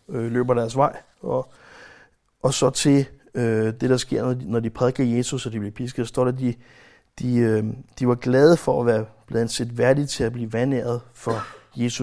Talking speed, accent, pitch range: 215 wpm, native, 120-145 Hz